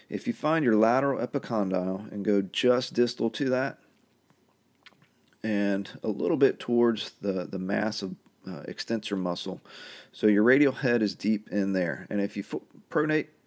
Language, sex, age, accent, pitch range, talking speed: English, male, 40-59, American, 100-125 Hz, 155 wpm